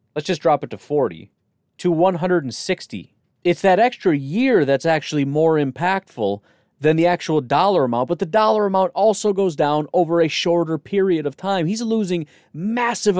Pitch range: 145-185 Hz